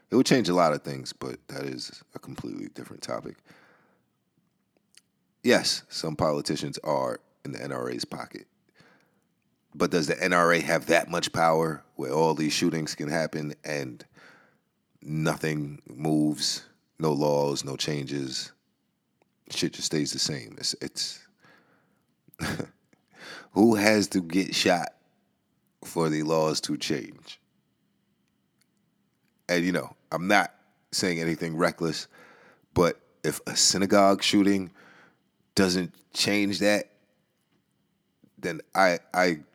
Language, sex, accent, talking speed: English, male, American, 120 wpm